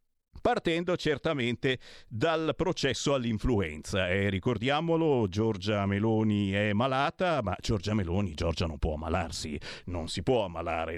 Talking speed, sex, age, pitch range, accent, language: 120 wpm, male, 40-59, 105-150 Hz, native, Italian